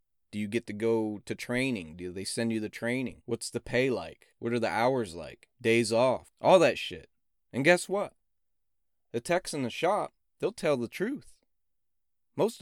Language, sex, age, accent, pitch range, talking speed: English, male, 30-49, American, 105-135 Hz, 190 wpm